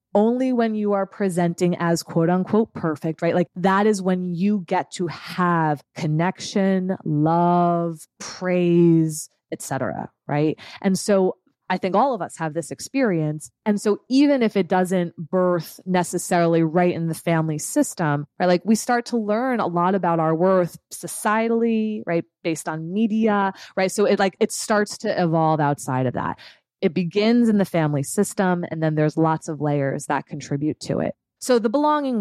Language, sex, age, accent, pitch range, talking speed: English, female, 20-39, American, 165-200 Hz, 175 wpm